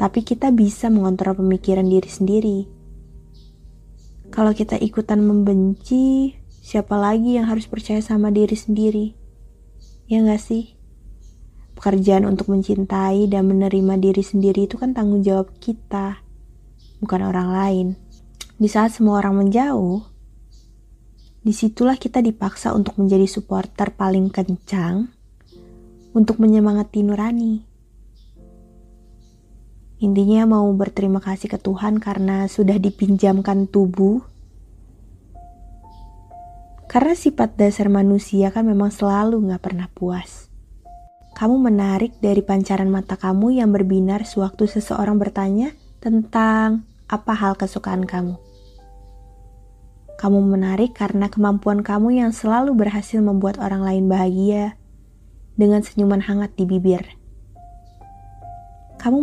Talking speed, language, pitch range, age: 110 wpm, Indonesian, 185-215 Hz, 20-39